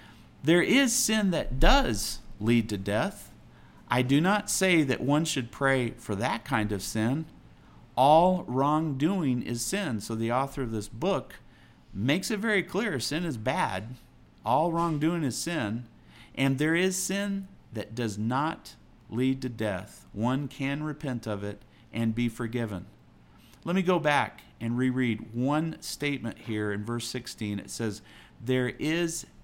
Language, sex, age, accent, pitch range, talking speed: English, male, 50-69, American, 110-155 Hz, 155 wpm